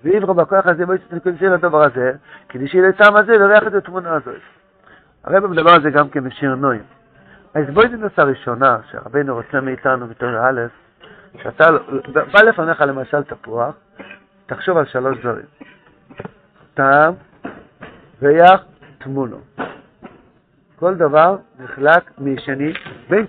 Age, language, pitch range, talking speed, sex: 50-69, Hebrew, 135-180 Hz, 125 wpm, male